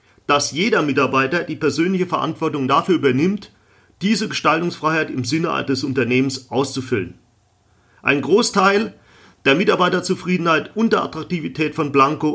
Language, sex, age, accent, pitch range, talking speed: German, male, 40-59, German, 115-155 Hz, 115 wpm